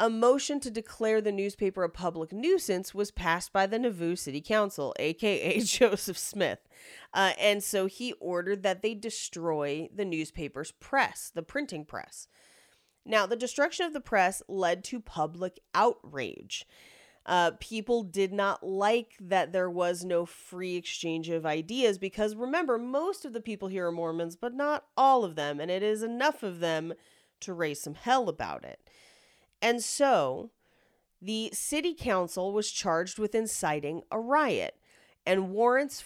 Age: 30-49